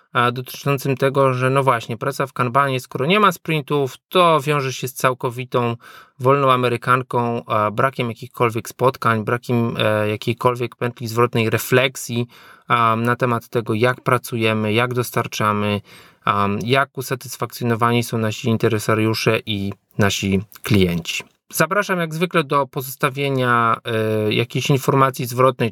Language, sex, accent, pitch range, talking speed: Polish, male, native, 115-135 Hz, 115 wpm